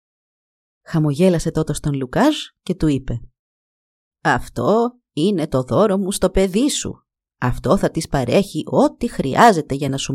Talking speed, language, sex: 140 wpm, Greek, female